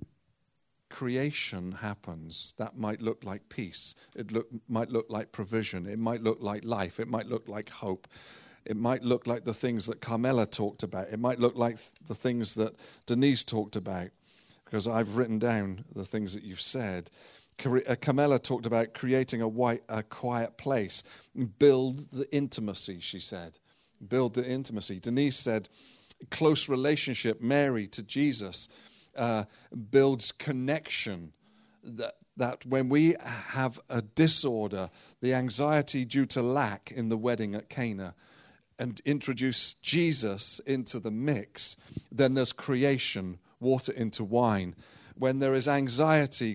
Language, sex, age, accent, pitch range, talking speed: English, male, 40-59, British, 110-135 Hz, 145 wpm